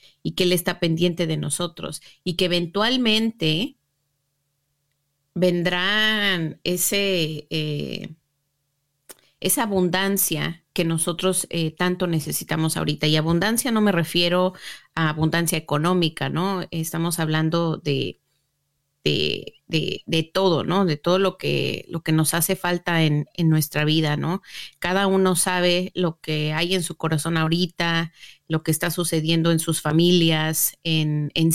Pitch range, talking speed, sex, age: 160-185 Hz, 135 wpm, female, 30-49